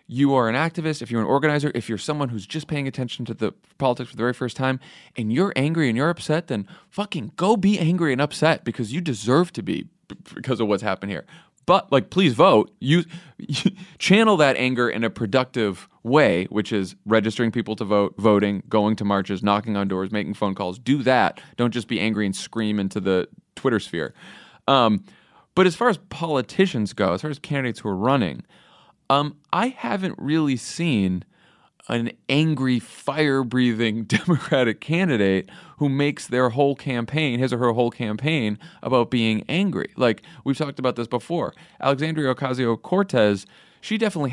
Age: 30-49